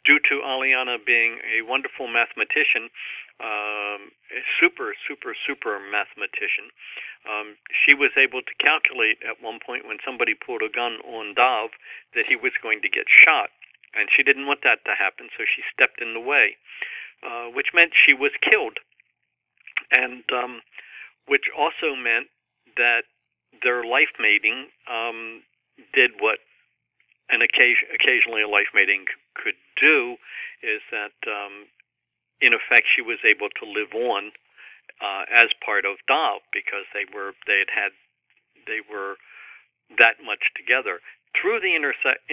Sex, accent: male, American